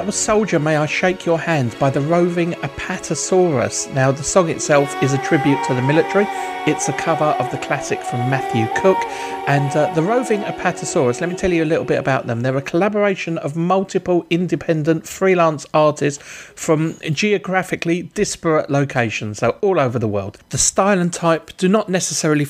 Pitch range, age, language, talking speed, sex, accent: 125-170 Hz, 40-59, English, 180 wpm, male, British